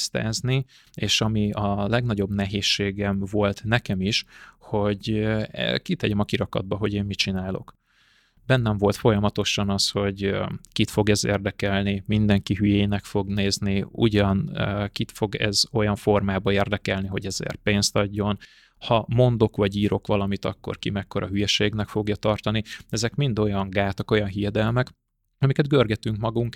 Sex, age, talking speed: male, 20-39, 135 wpm